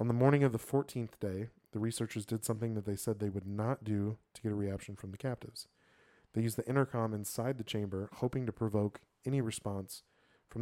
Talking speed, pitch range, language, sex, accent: 215 wpm, 100-115 Hz, English, male, American